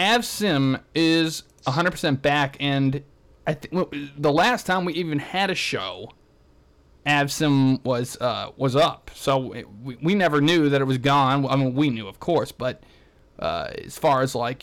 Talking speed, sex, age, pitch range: 180 wpm, male, 20-39, 125-160 Hz